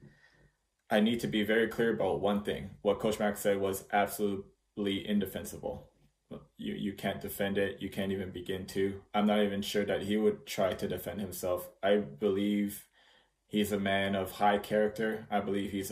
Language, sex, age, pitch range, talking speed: English, male, 20-39, 95-105 Hz, 180 wpm